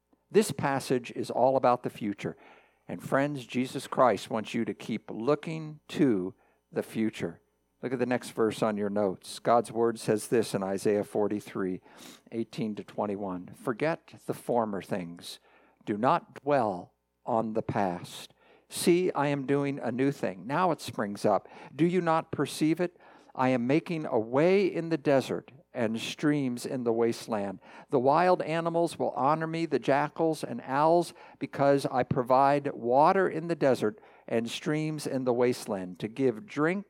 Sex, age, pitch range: male, 60-79, 105-145 Hz